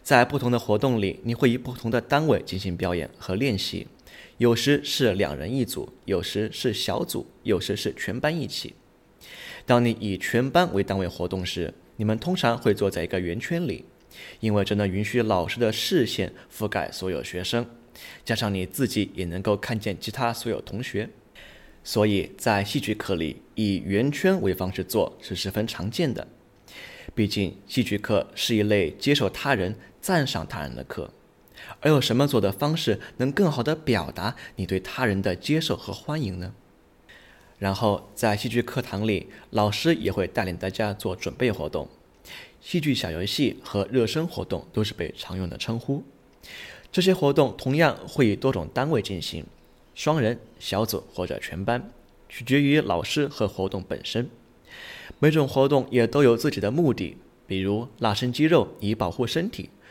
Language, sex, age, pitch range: English, male, 20-39, 95-130 Hz